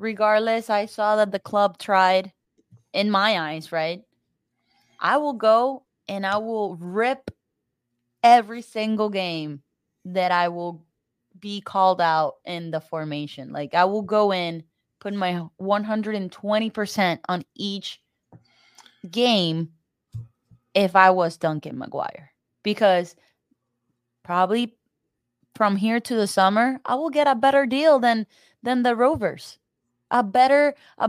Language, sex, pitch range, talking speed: English, female, 170-230 Hz, 125 wpm